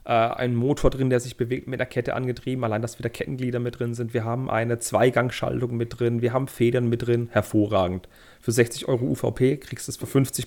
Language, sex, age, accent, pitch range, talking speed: German, male, 40-59, German, 115-135 Hz, 220 wpm